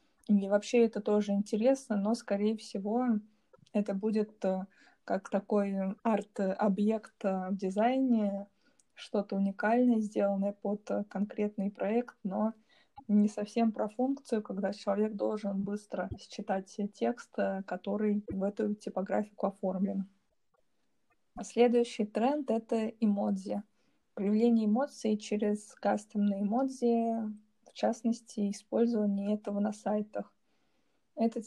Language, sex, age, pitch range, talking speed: Russian, female, 20-39, 200-225 Hz, 100 wpm